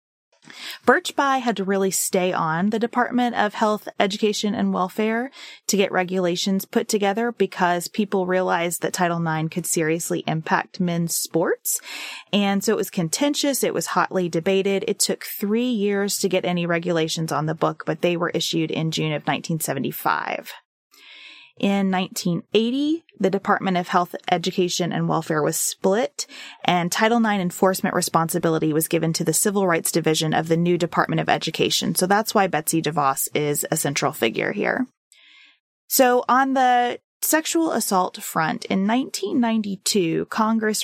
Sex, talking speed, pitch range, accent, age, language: female, 155 wpm, 170-210 Hz, American, 20-39, English